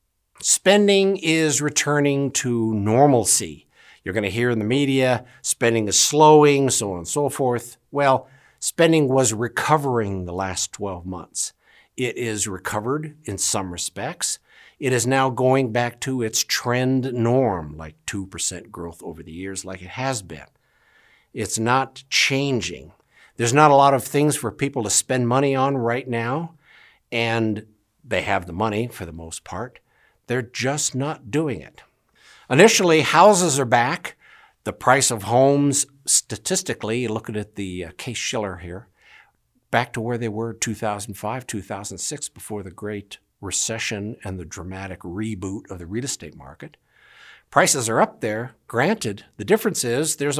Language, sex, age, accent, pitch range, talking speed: English, male, 60-79, American, 100-140 Hz, 150 wpm